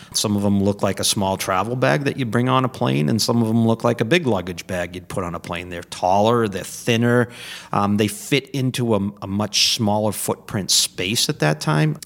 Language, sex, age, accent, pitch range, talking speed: English, male, 40-59, American, 100-125 Hz, 235 wpm